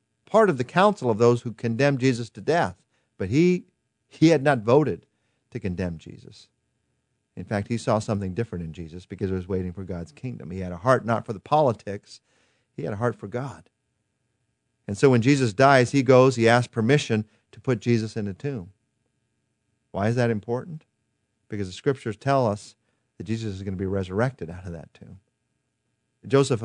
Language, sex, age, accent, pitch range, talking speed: English, male, 40-59, American, 100-125 Hz, 195 wpm